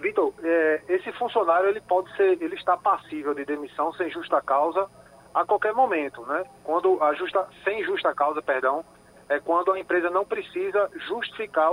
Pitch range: 160-235 Hz